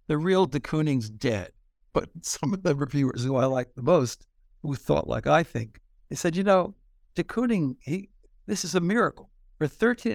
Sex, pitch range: male, 120-155 Hz